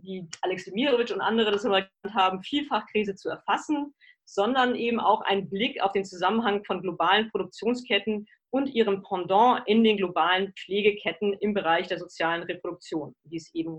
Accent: German